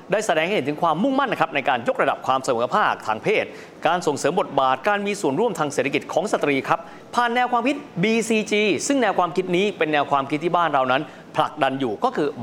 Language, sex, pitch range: Thai, male, 150-225 Hz